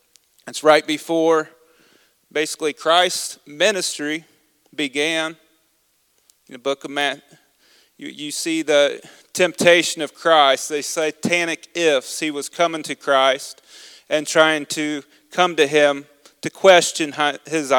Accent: American